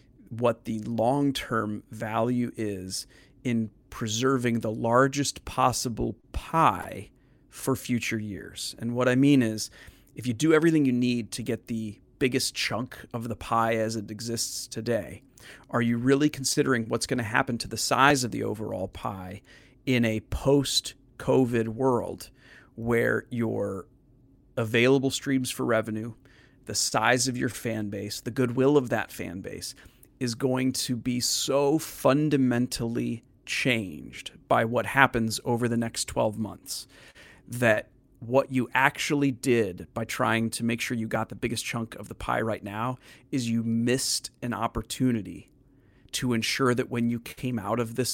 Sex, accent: male, American